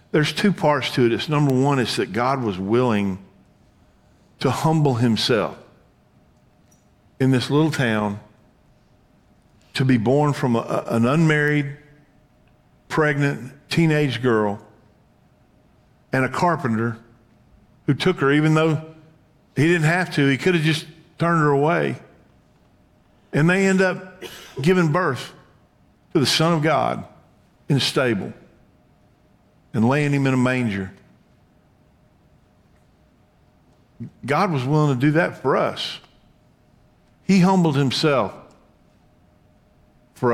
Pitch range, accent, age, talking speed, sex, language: 120-155 Hz, American, 50-69, 120 wpm, male, English